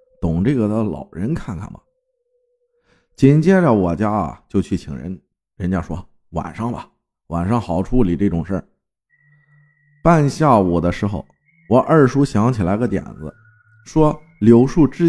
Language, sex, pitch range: Chinese, male, 90-150 Hz